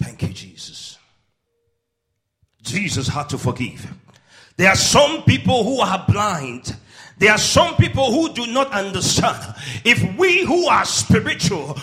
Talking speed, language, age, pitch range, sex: 130 wpm, English, 40-59, 170-265 Hz, male